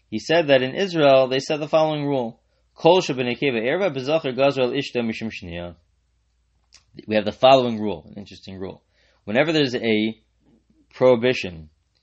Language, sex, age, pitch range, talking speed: English, male, 30-49, 100-125 Hz, 110 wpm